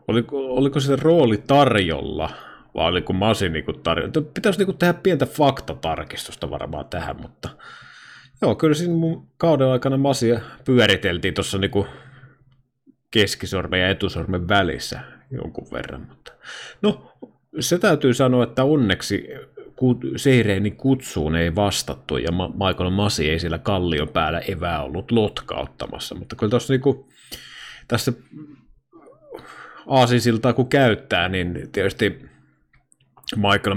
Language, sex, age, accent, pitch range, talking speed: Finnish, male, 30-49, native, 95-130 Hz, 120 wpm